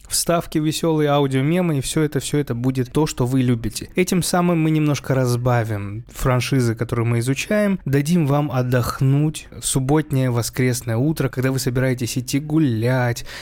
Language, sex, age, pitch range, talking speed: Russian, male, 20-39, 120-150 Hz, 150 wpm